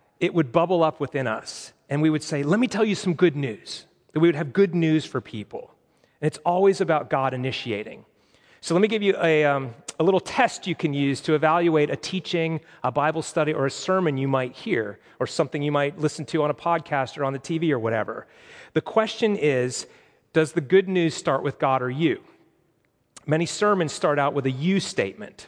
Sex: male